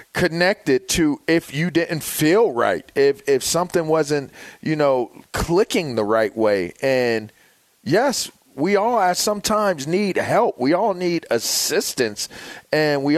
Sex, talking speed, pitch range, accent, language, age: male, 135 wpm, 110-155 Hz, American, English, 40-59